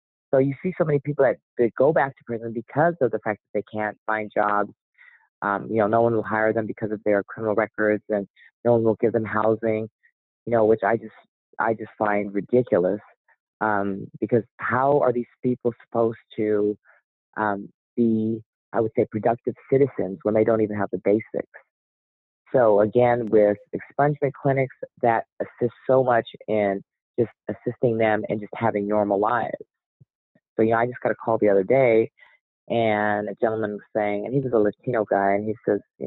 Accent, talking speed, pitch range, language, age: American, 195 wpm, 105-125 Hz, English, 40-59